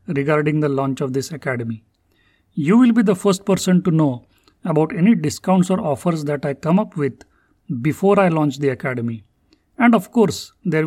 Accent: Indian